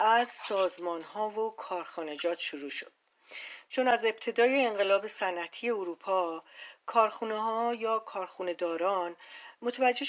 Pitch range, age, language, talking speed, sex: 175-225 Hz, 40-59, Persian, 115 wpm, female